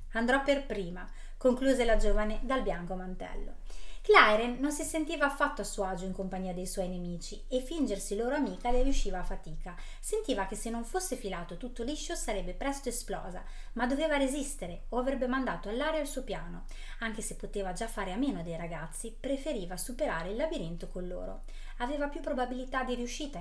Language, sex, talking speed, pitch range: Italian, female, 180 wpm, 195-275 Hz